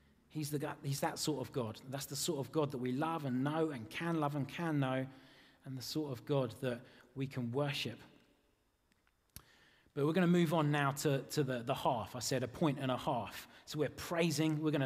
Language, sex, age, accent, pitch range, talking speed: German, male, 30-49, British, 135-165 Hz, 225 wpm